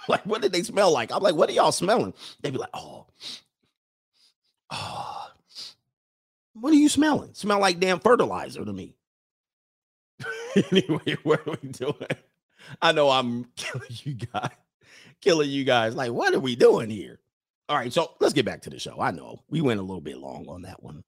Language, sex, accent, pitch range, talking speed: English, male, American, 110-150 Hz, 190 wpm